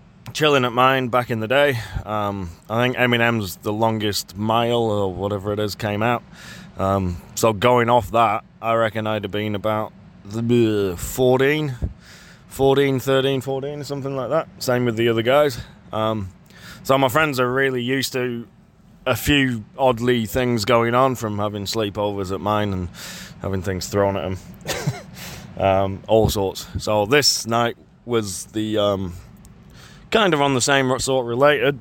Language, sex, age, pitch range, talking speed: English, male, 20-39, 105-125 Hz, 160 wpm